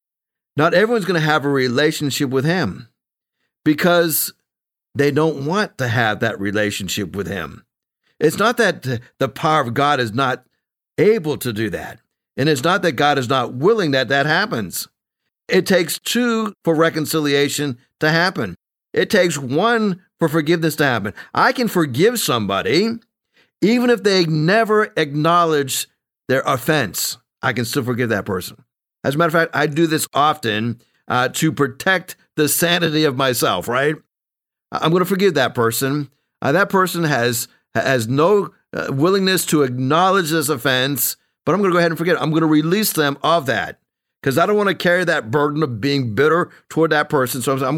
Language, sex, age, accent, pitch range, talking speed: English, male, 50-69, American, 135-175 Hz, 175 wpm